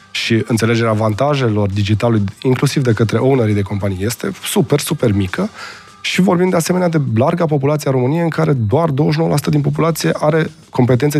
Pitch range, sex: 110-135 Hz, male